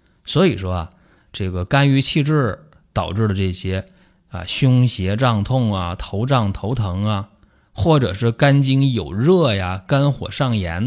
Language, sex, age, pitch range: Chinese, male, 20-39, 95-145 Hz